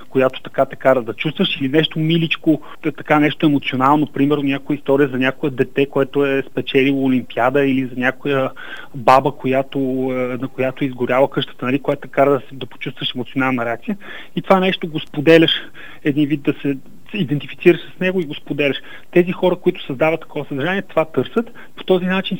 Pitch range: 135-165 Hz